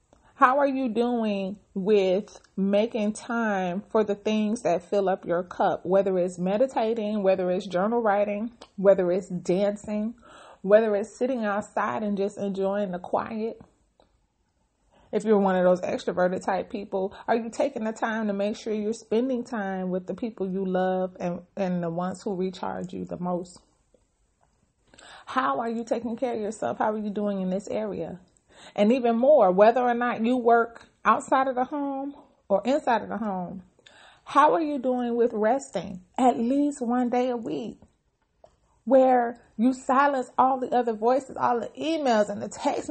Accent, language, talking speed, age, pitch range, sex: American, English, 170 wpm, 30-49, 195-250 Hz, female